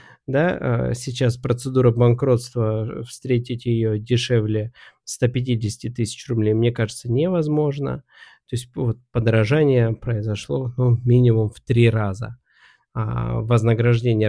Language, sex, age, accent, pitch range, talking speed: Russian, male, 20-39, native, 115-130 Hz, 95 wpm